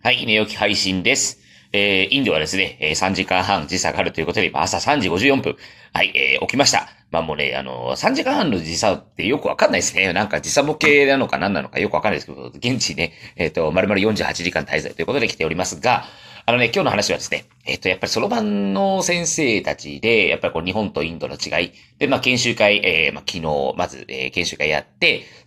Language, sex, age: Japanese, male, 40-59